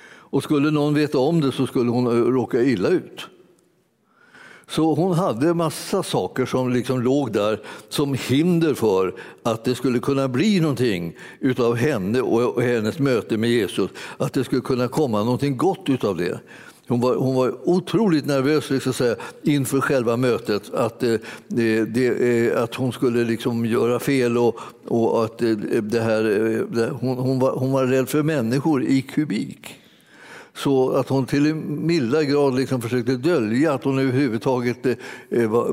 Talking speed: 165 wpm